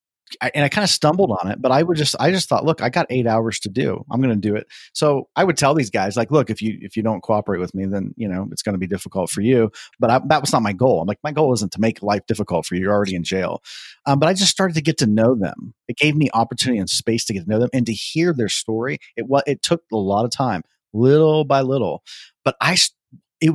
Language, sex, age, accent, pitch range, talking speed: English, male, 30-49, American, 110-155 Hz, 285 wpm